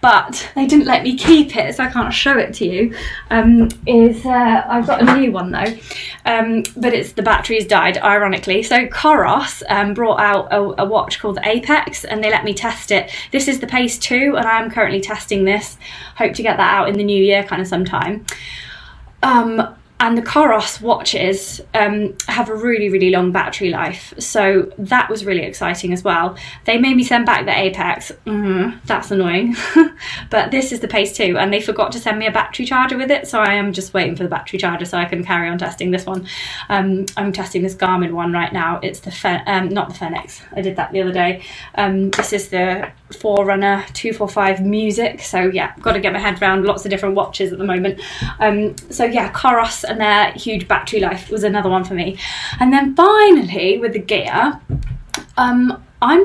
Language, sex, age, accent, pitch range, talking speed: English, female, 20-39, British, 190-235 Hz, 210 wpm